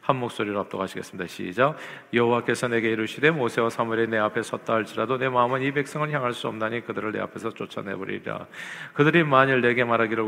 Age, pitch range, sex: 40-59, 110-135 Hz, male